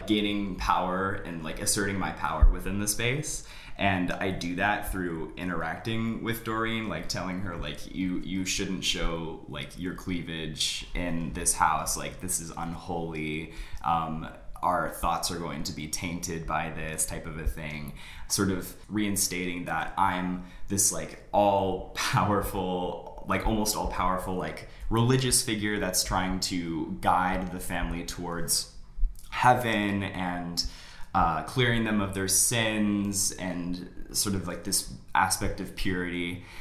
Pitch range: 85-100 Hz